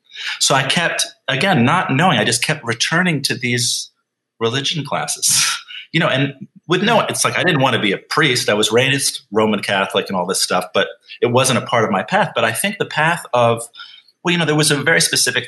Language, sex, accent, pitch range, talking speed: English, male, American, 100-135 Hz, 230 wpm